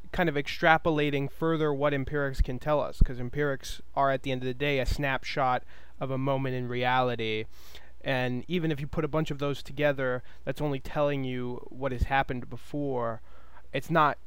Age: 20-39